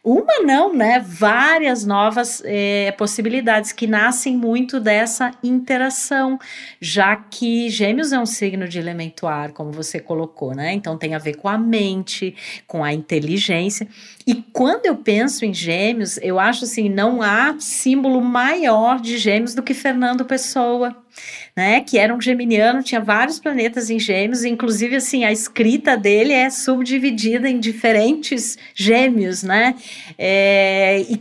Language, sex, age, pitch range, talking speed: Portuguese, female, 40-59, 190-245 Hz, 145 wpm